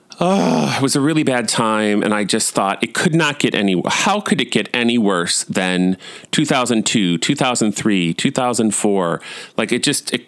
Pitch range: 95-130 Hz